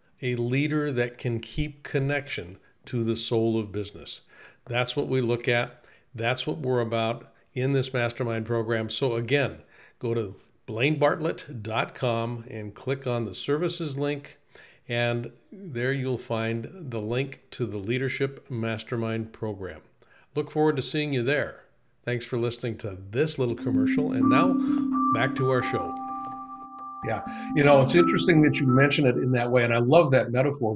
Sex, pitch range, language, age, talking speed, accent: male, 115-140 Hz, English, 50-69, 160 wpm, American